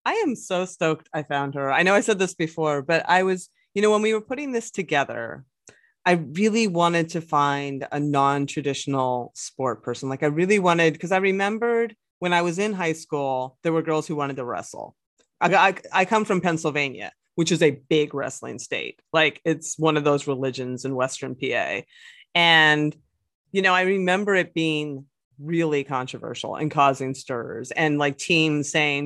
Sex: female